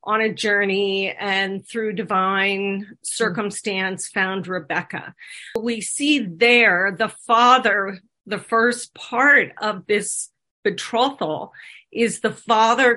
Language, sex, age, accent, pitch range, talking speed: English, female, 40-59, American, 195-235 Hz, 105 wpm